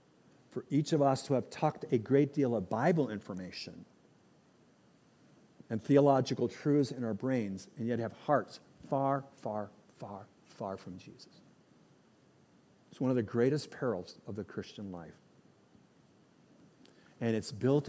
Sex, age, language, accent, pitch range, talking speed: male, 50-69, English, American, 105-140 Hz, 140 wpm